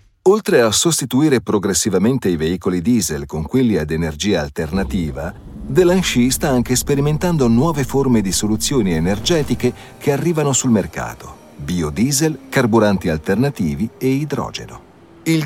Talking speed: 120 wpm